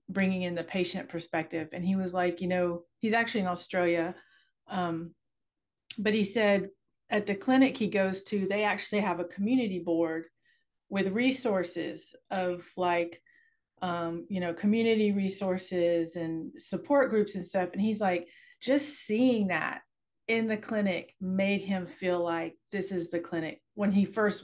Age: 40-59